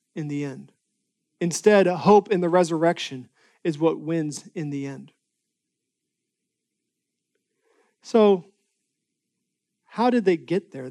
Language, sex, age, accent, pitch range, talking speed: English, male, 40-59, American, 170-215 Hz, 115 wpm